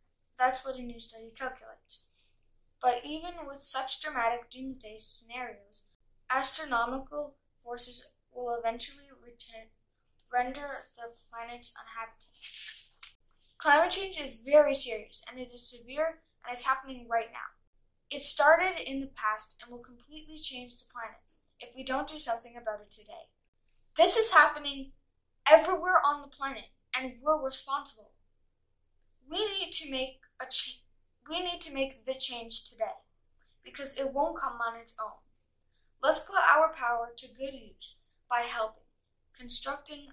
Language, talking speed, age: English, 140 wpm, 10-29